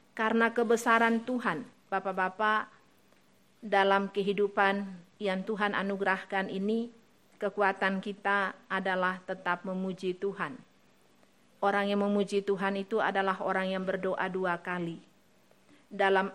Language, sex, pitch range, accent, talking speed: English, female, 195-215 Hz, Indonesian, 105 wpm